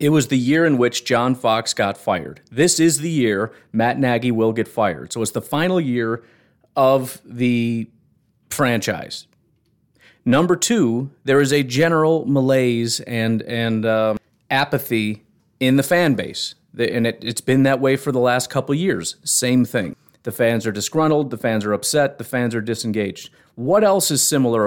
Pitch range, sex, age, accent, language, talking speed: 115-150 Hz, male, 40-59, American, English, 175 wpm